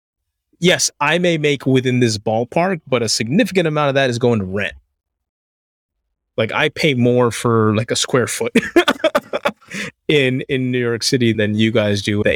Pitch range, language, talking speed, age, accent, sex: 85-135 Hz, English, 175 wpm, 20-39, American, male